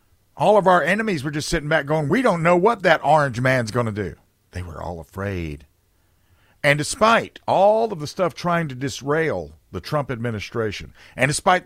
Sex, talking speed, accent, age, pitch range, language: male, 190 wpm, American, 50-69, 100-155 Hz, English